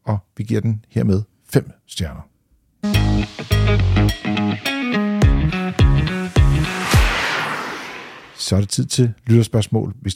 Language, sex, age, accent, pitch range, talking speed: Danish, male, 50-69, native, 110-140 Hz, 85 wpm